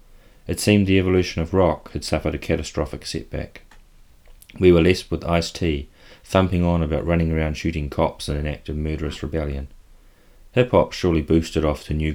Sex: male